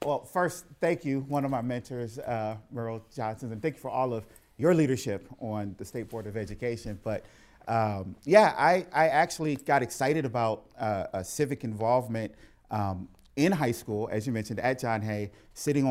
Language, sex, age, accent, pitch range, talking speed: English, male, 40-59, American, 105-135 Hz, 180 wpm